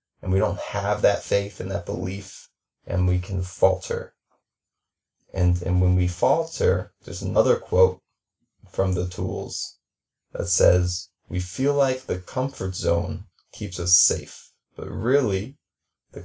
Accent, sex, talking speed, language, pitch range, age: American, male, 140 wpm, English, 90-105 Hz, 20-39